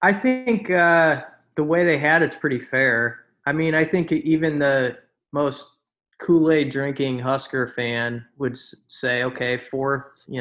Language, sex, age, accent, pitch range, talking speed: English, male, 20-39, American, 125-155 Hz, 155 wpm